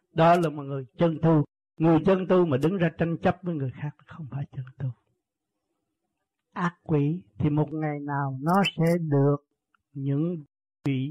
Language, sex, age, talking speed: Vietnamese, male, 60-79, 165 wpm